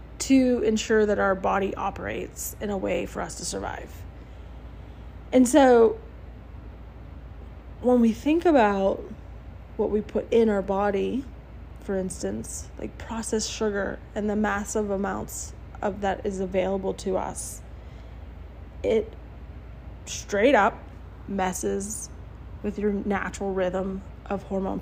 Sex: female